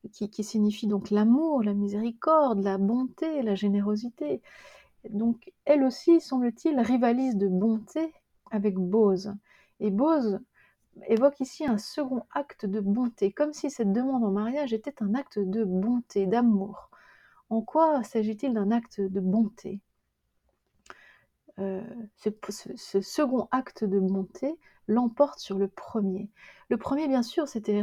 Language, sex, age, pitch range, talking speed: French, female, 30-49, 200-260 Hz, 140 wpm